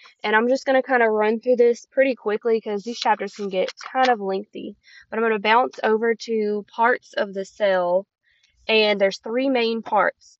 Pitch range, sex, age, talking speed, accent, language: 195-225 Hz, female, 20-39, 210 wpm, American, English